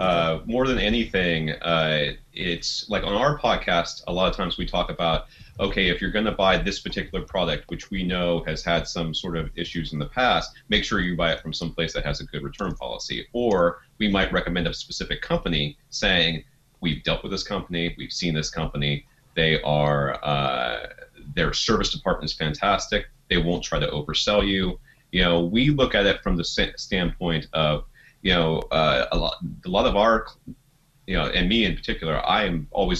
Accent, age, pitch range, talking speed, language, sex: American, 30-49, 80-100 Hz, 200 wpm, English, male